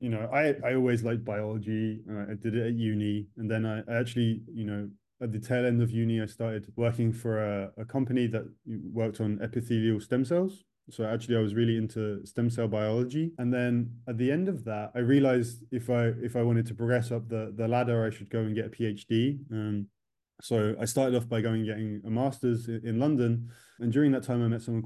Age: 20-39